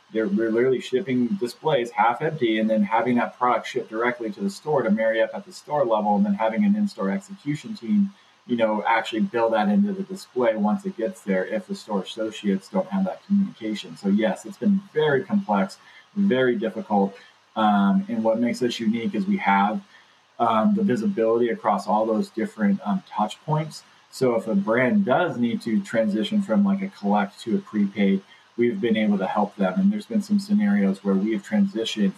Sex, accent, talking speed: male, American, 205 wpm